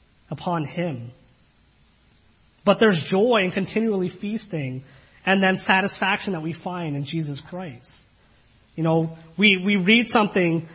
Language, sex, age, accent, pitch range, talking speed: English, male, 30-49, American, 155-200 Hz, 130 wpm